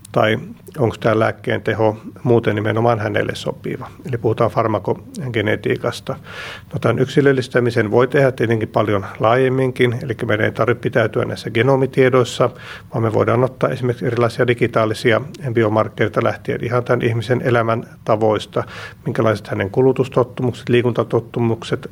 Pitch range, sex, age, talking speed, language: 110-125 Hz, male, 50-69, 125 wpm, Finnish